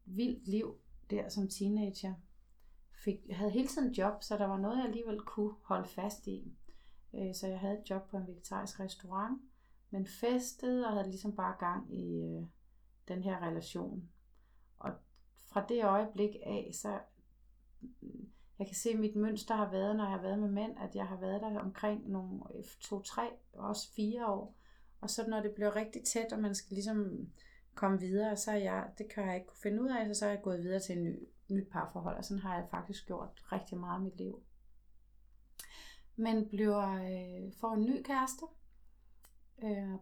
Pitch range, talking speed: 190-215 Hz, 185 wpm